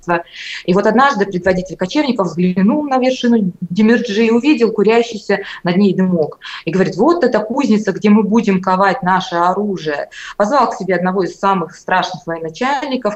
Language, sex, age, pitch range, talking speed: Russian, female, 20-39, 175-230 Hz, 155 wpm